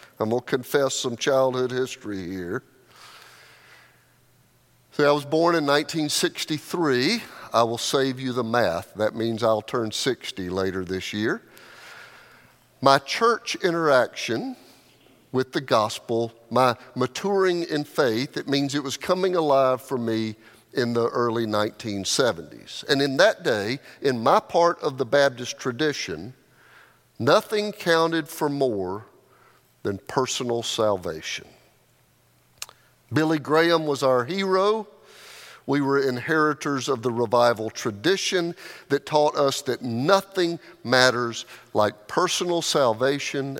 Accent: American